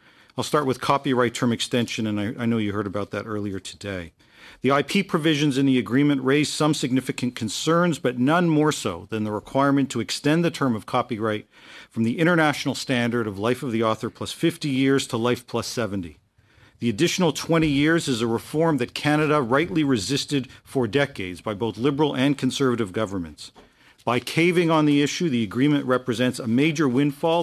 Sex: male